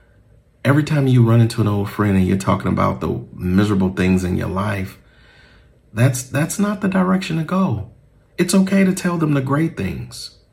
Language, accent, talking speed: English, American, 190 wpm